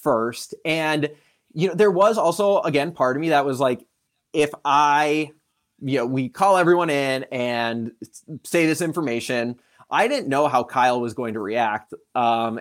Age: 20-39